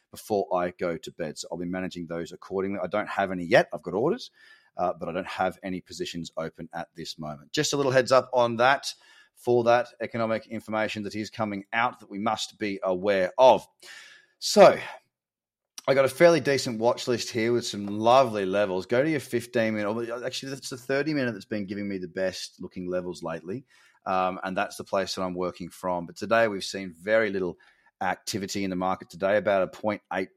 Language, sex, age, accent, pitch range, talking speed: English, male, 30-49, Australian, 95-115 Hz, 210 wpm